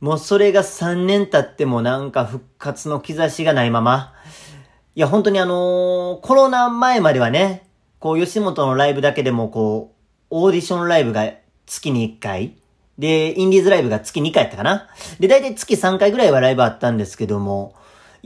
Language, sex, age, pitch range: Japanese, male, 40-59, 125-185 Hz